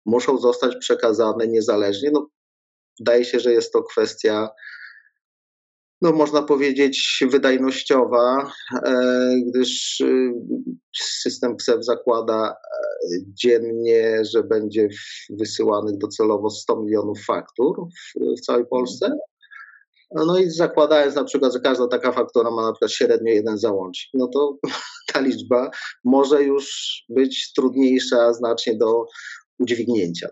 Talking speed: 105 wpm